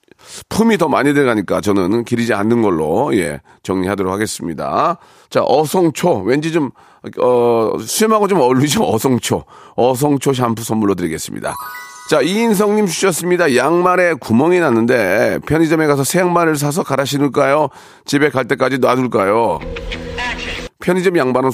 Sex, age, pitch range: male, 40-59, 120-175 Hz